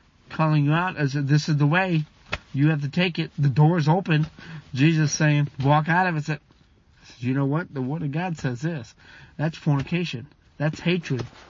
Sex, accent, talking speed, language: male, American, 195 wpm, English